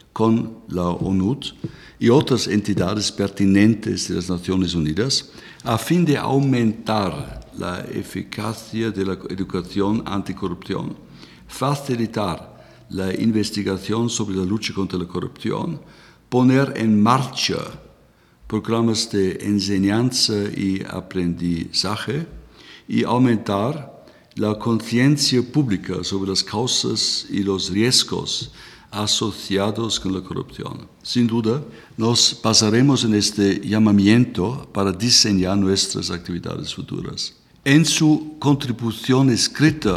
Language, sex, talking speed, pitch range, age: Spanish, male, 105 wpm, 95-120 Hz, 60-79